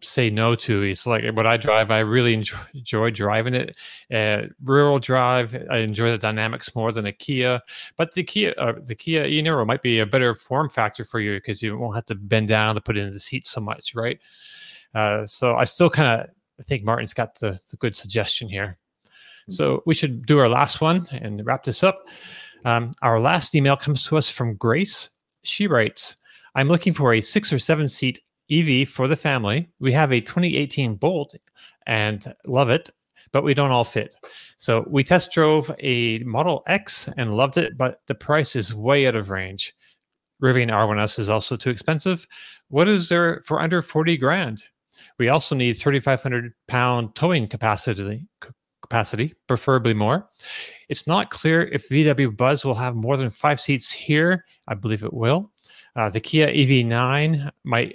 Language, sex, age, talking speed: English, male, 30-49, 185 wpm